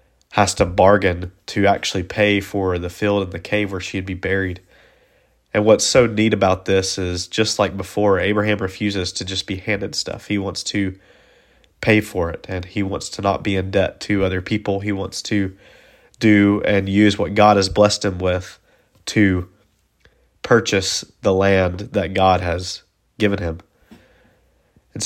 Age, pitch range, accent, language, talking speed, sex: 20-39, 95-105 Hz, American, English, 170 wpm, male